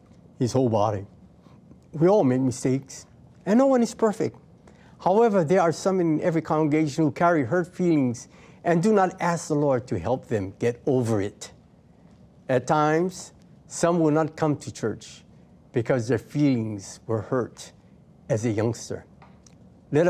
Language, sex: English, male